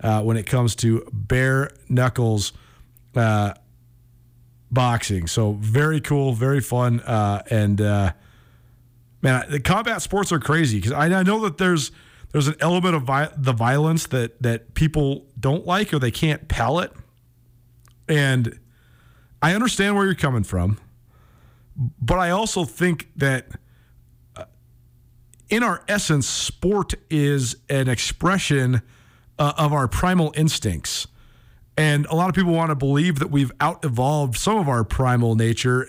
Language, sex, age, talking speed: English, male, 40-59, 140 wpm